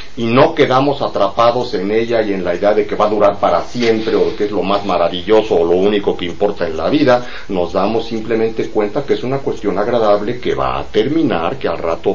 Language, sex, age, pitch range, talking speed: English, male, 40-59, 100-135 Hz, 230 wpm